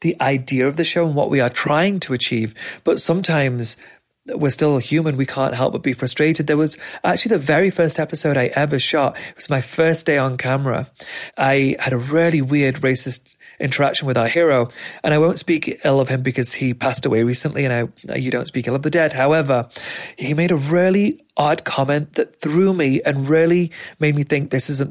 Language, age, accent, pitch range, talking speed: English, 30-49, British, 125-150 Hz, 210 wpm